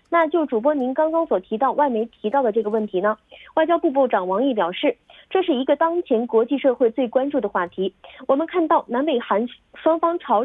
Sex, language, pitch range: female, Korean, 225-310 Hz